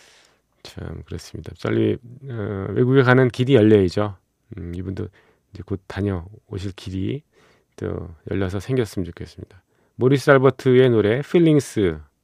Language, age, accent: Korean, 40-59, native